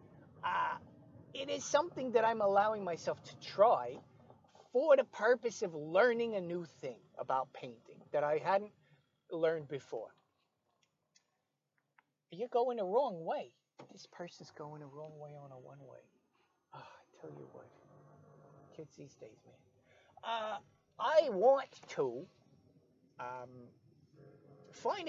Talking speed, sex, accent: 130 wpm, male, American